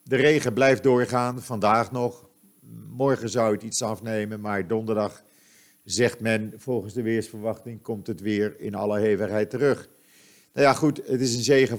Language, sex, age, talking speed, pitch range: Dutch, male, 50-69, 165 wpm, 100-125 Hz